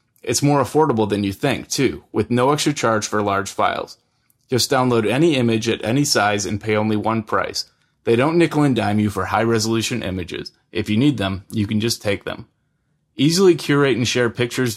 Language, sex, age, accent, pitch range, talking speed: English, male, 30-49, American, 110-140 Hz, 205 wpm